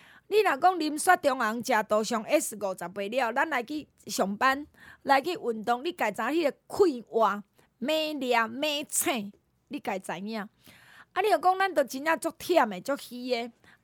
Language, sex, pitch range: Chinese, female, 225-310 Hz